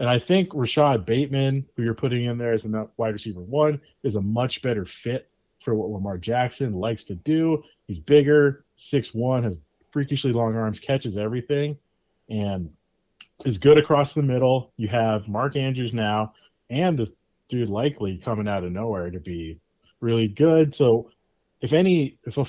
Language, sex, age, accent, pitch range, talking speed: English, male, 30-49, American, 105-135 Hz, 170 wpm